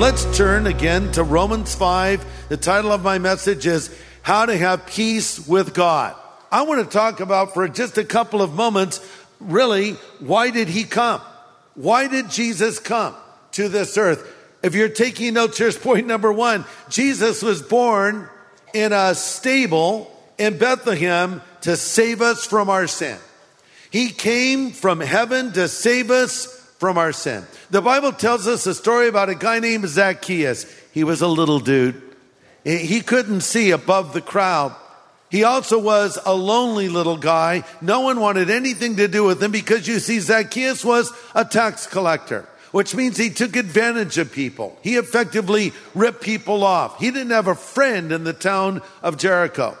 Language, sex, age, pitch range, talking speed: English, male, 50-69, 180-230 Hz, 170 wpm